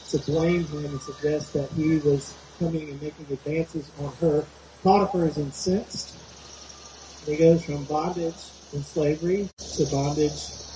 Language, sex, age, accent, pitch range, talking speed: English, male, 40-59, American, 150-190 Hz, 140 wpm